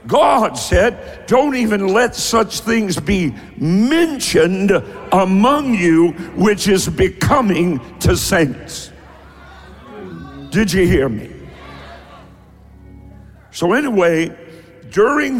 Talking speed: 90 wpm